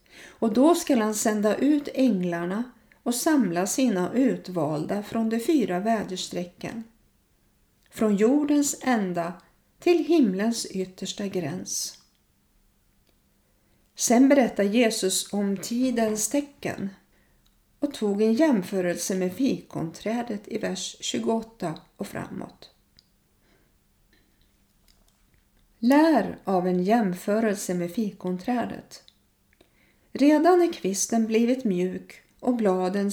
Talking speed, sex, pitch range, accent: 95 wpm, female, 185-255 Hz, native